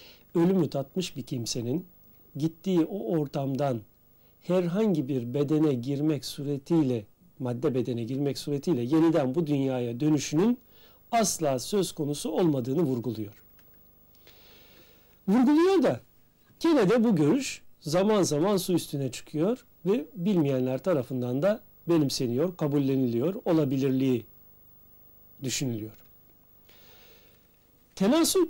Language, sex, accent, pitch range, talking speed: Turkish, male, native, 120-170 Hz, 95 wpm